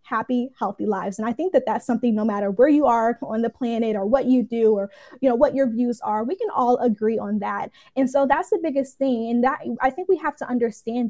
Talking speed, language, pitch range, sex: 260 wpm, English, 225-275 Hz, female